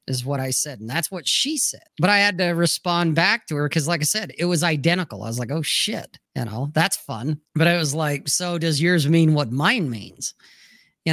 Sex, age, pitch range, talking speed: male, 40-59, 145-190 Hz, 245 wpm